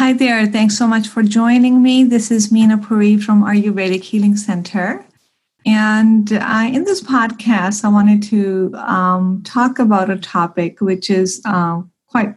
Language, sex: English, female